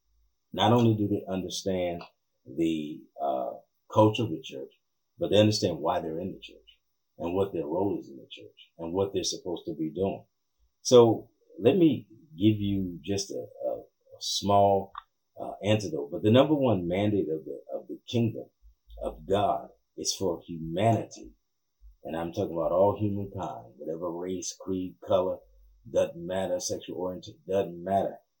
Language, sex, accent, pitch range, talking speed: English, male, American, 90-115 Hz, 165 wpm